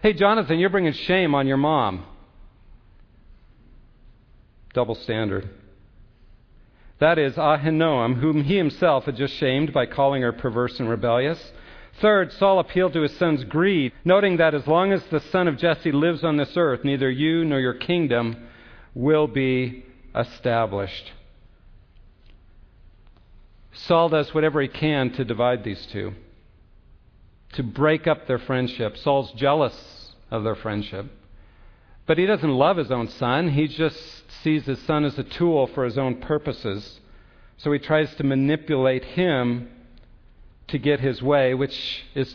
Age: 50-69